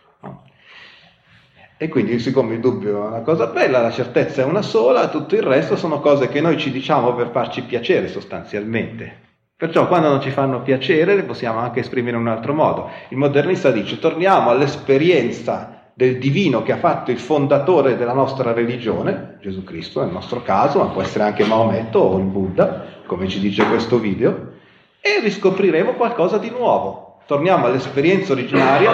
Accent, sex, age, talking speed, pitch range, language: native, male, 40-59, 170 wpm, 115-150 Hz, Italian